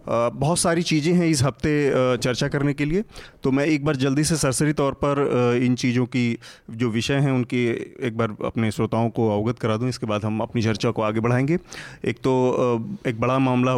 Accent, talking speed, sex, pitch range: native, 205 wpm, male, 115-130 Hz